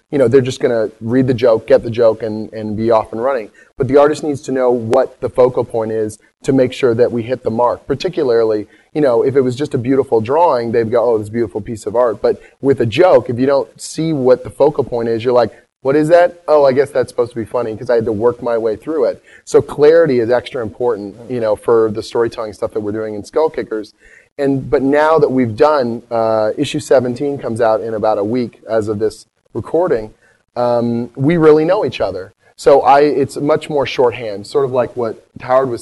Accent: American